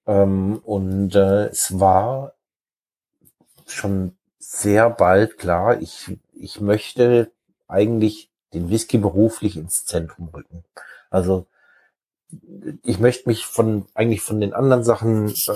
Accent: German